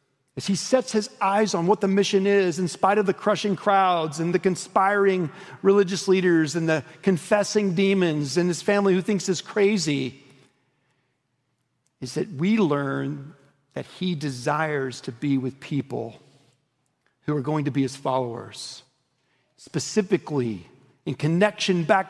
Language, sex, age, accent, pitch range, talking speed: English, male, 40-59, American, 140-200 Hz, 145 wpm